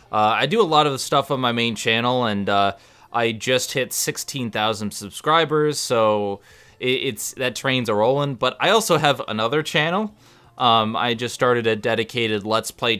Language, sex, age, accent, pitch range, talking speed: English, male, 20-39, American, 110-135 Hz, 185 wpm